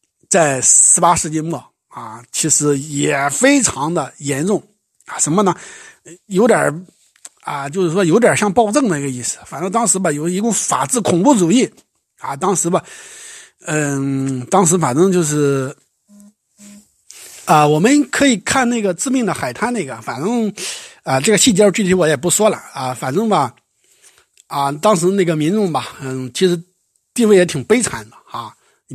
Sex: male